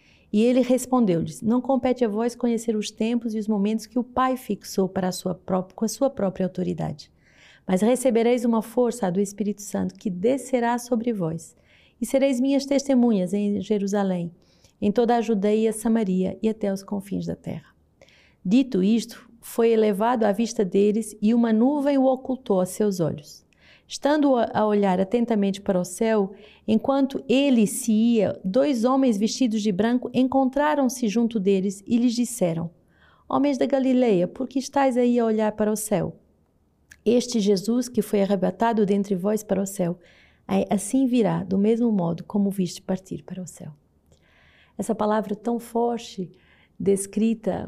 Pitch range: 195-240 Hz